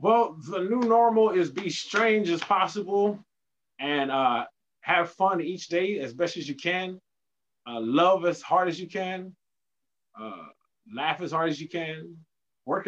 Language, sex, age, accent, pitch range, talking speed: English, male, 20-39, American, 125-185 Hz, 165 wpm